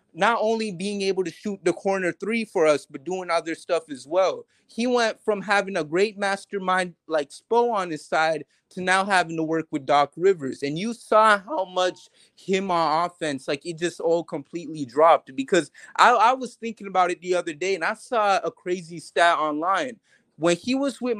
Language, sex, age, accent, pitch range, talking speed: English, male, 30-49, American, 160-205 Hz, 205 wpm